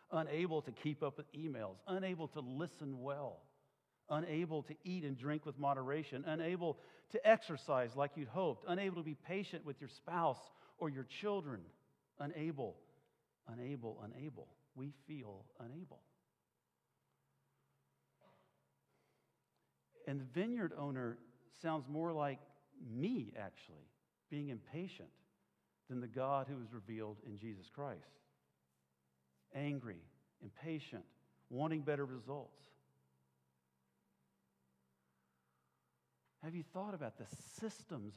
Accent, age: American, 50-69